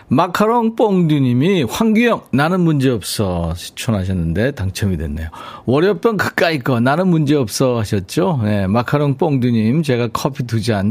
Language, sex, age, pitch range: Korean, male, 40-59, 115-160 Hz